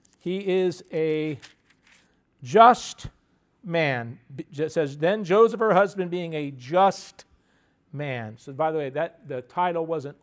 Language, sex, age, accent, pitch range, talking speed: English, male, 50-69, American, 150-190 Hz, 135 wpm